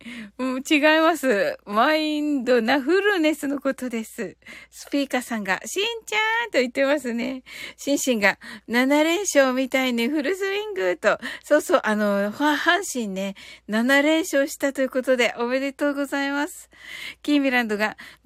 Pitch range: 235-325 Hz